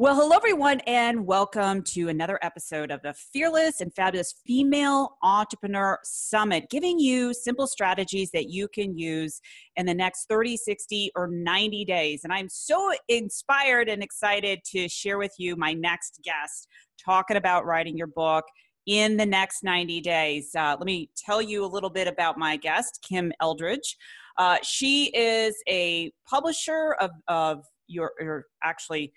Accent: American